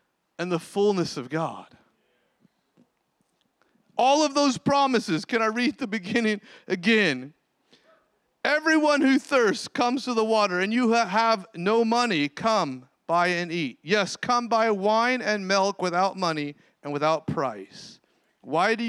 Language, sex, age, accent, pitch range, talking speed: English, male, 40-59, American, 145-225 Hz, 140 wpm